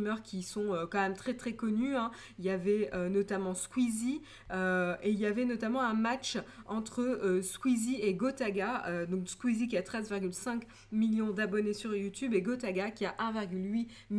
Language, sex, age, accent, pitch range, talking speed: French, female, 20-39, French, 195-235 Hz, 180 wpm